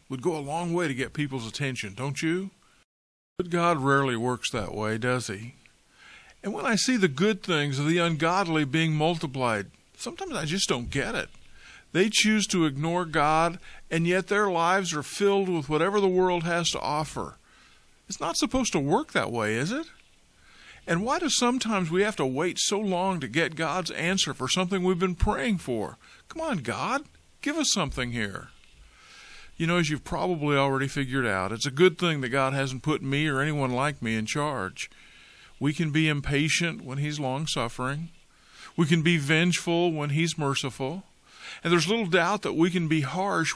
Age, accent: 50-69, American